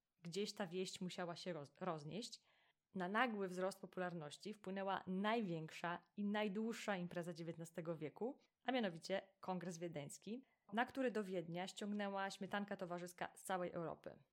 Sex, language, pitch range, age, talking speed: female, Polish, 175-215 Hz, 20-39, 130 wpm